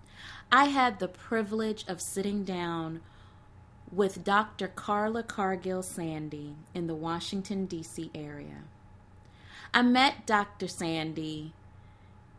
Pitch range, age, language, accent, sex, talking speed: 120-195 Hz, 30-49, English, American, female, 100 wpm